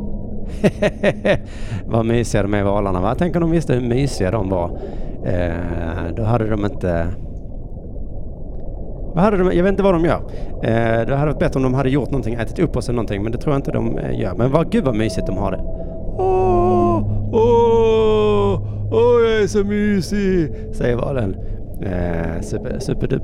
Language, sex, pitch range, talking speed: Swedish, male, 105-165 Hz, 180 wpm